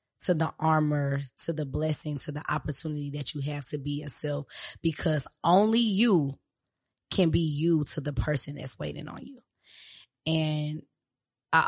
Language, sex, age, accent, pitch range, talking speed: English, female, 20-39, American, 145-165 Hz, 155 wpm